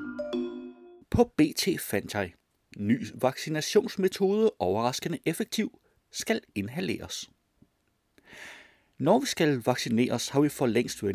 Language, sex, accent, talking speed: Danish, male, native, 95 wpm